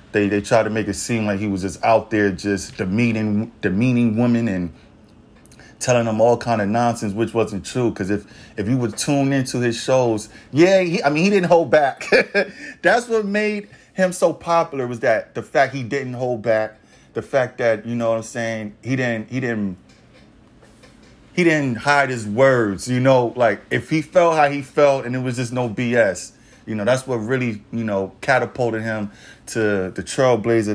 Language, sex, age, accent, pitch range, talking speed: English, male, 30-49, American, 105-125 Hz, 200 wpm